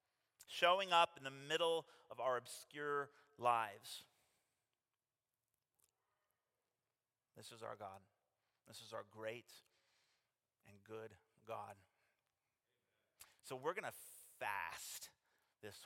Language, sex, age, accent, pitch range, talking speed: English, male, 30-49, American, 105-130 Hz, 100 wpm